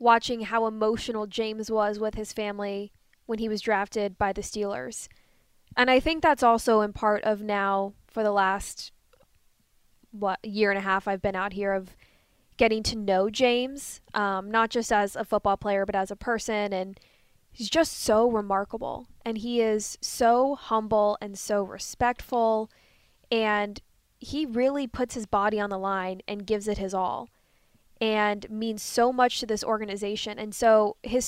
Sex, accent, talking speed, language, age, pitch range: female, American, 170 wpm, English, 10-29, 205-240 Hz